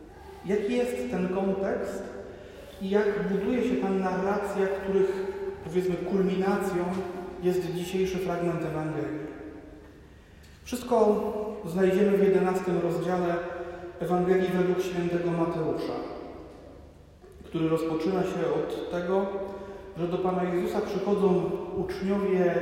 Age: 40-59